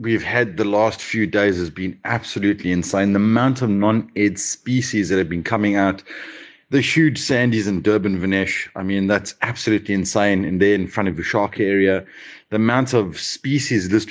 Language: English